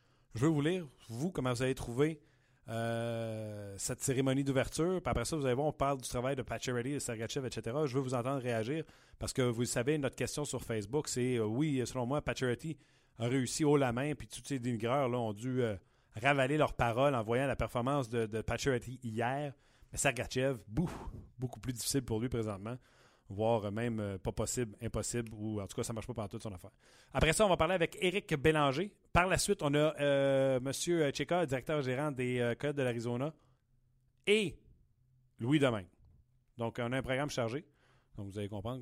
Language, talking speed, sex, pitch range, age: French, 205 wpm, male, 115-145 Hz, 30-49